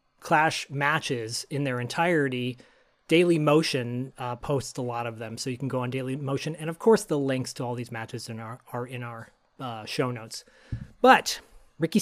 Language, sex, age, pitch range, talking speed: English, male, 30-49, 130-170 Hz, 180 wpm